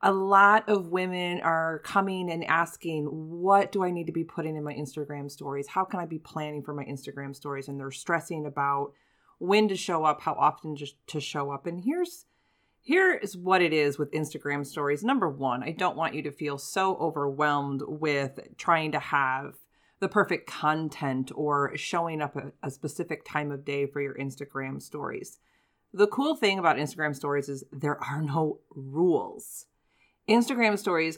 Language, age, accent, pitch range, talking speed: English, 30-49, American, 145-185 Hz, 185 wpm